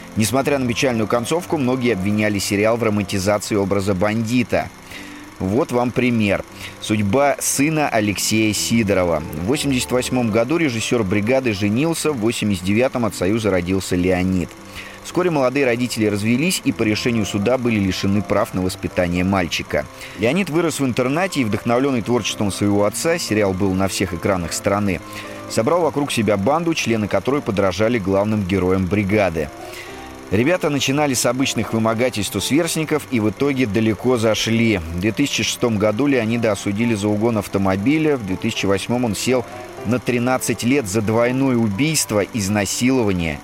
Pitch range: 100-130 Hz